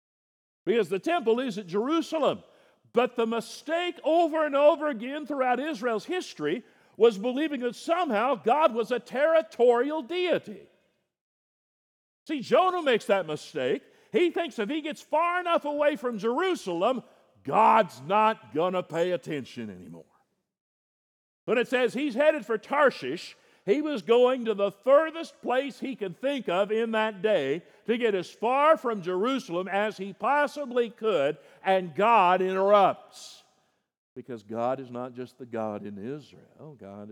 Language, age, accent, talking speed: English, 50-69, American, 145 wpm